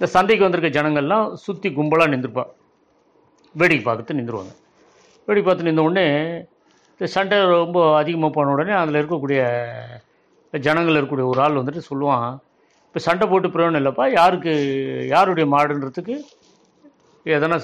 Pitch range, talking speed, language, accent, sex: 140-175 Hz, 130 wpm, Tamil, native, male